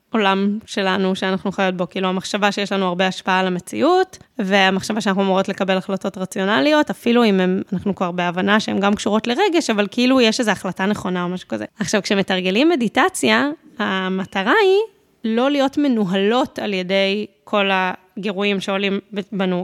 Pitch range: 200-275 Hz